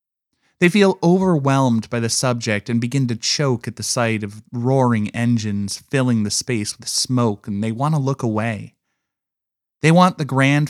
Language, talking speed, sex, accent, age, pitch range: English, 175 wpm, male, American, 20-39, 115-150 Hz